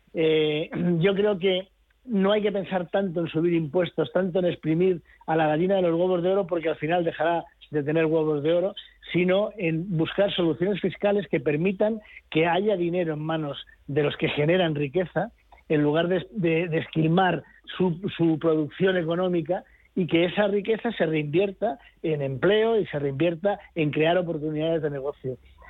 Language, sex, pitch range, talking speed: Spanish, male, 155-190 Hz, 175 wpm